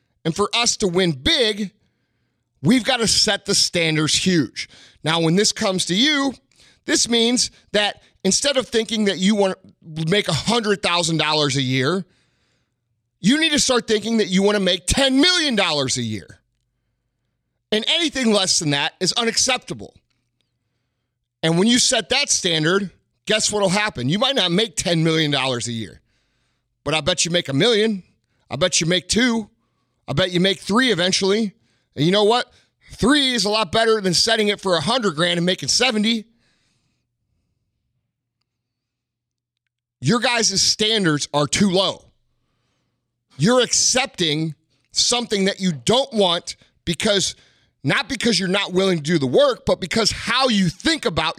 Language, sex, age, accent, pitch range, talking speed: English, male, 30-49, American, 135-215 Hz, 160 wpm